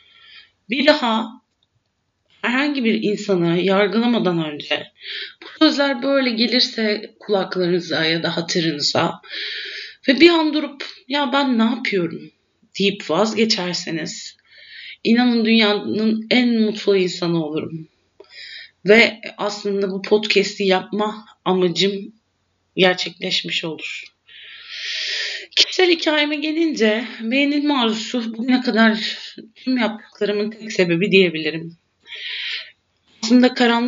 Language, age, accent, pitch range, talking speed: Turkish, 30-49, native, 180-245 Hz, 95 wpm